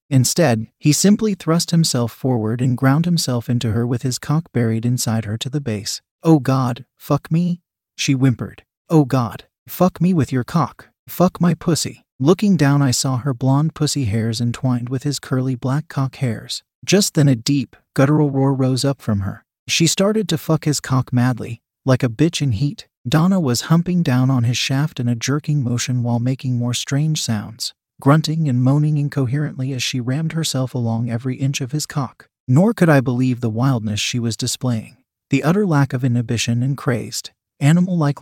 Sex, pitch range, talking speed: male, 125-155 Hz, 190 wpm